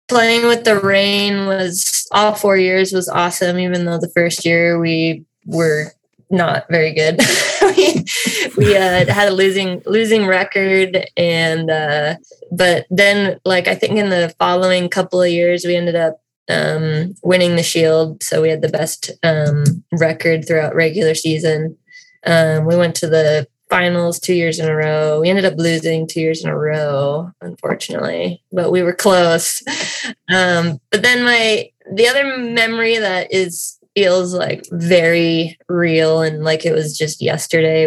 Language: English